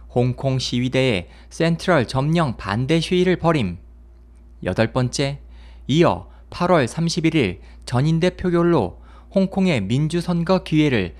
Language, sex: Korean, male